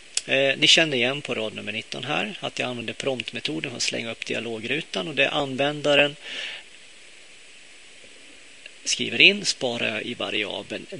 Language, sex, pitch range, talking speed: Swedish, male, 120-150 Hz, 135 wpm